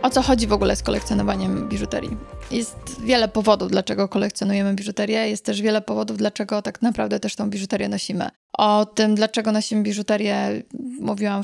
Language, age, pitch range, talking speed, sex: Polish, 20-39, 210-240 Hz, 165 wpm, female